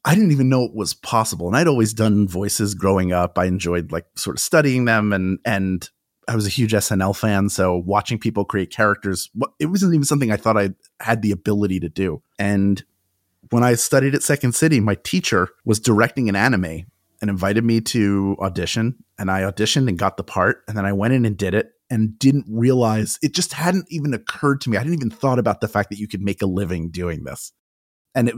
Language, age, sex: English, 30-49, male